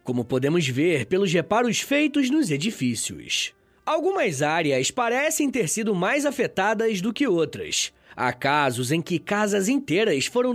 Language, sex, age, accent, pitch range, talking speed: Portuguese, male, 20-39, Brazilian, 160-265 Hz, 140 wpm